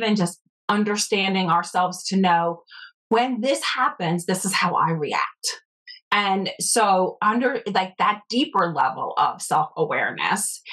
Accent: American